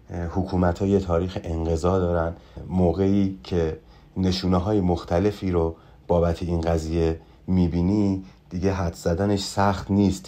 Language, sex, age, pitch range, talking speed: Persian, male, 30-49, 80-95 Hz, 110 wpm